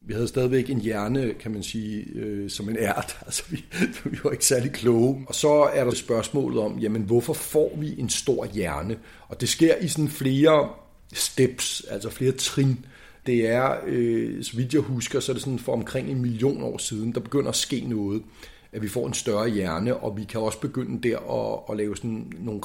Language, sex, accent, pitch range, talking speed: Danish, male, native, 110-130 Hz, 215 wpm